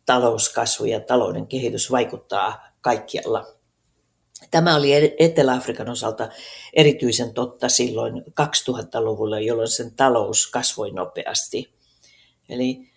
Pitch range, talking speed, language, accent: 115-140 Hz, 95 wpm, Finnish, native